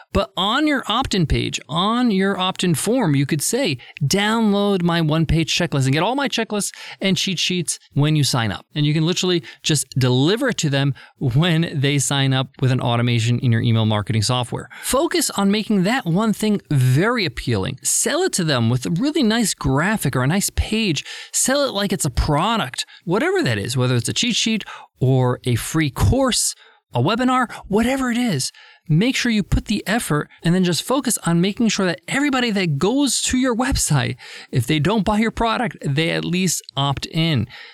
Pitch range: 140-215 Hz